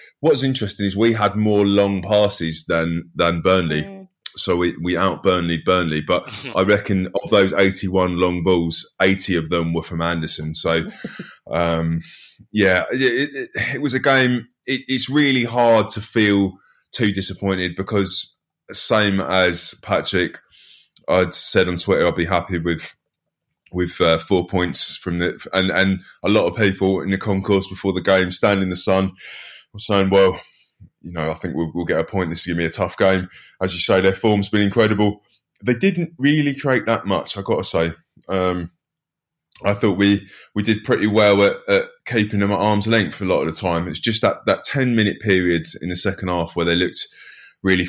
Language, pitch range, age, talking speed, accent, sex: English, 90-105 Hz, 20-39, 190 wpm, British, male